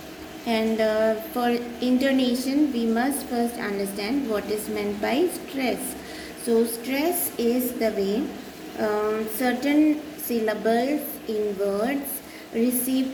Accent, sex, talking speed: Indian, female, 110 wpm